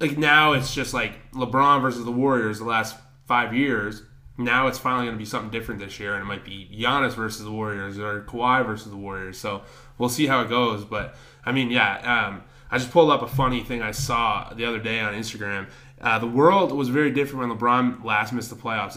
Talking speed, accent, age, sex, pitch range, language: 230 wpm, American, 20-39, male, 115-135 Hz, English